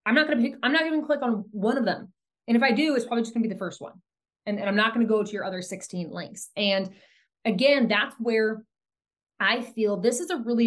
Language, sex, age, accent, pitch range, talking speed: English, female, 20-39, American, 185-235 Hz, 265 wpm